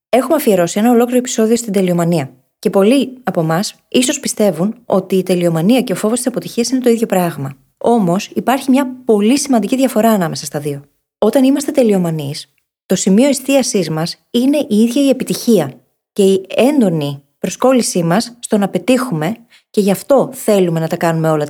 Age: 20-39